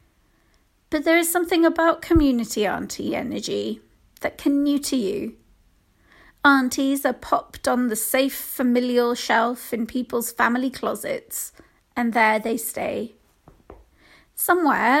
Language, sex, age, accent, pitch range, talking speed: English, female, 40-59, British, 225-275 Hz, 115 wpm